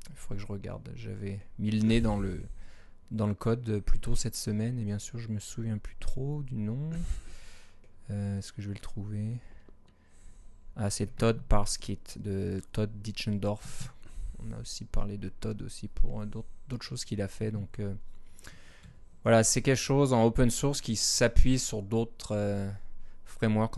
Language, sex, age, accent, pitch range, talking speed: French, male, 20-39, French, 100-115 Hz, 185 wpm